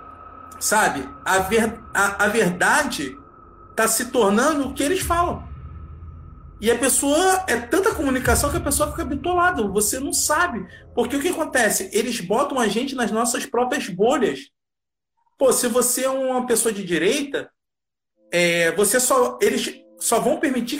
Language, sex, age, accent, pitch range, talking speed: Portuguese, male, 40-59, Brazilian, 195-270 Hz, 155 wpm